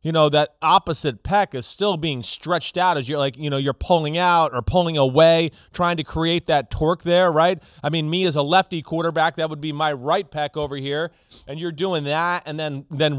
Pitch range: 140-175 Hz